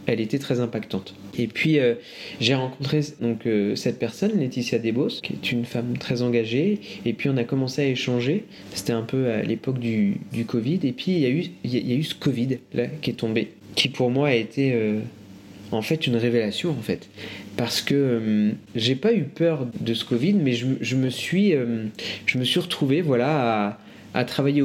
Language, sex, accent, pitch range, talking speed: French, male, French, 115-140 Hz, 210 wpm